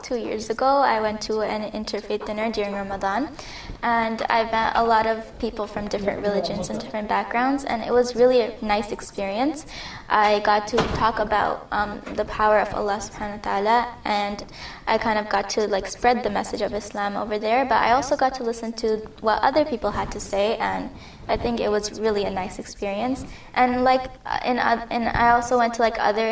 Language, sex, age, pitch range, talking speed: English, female, 10-29, 210-240 Hz, 205 wpm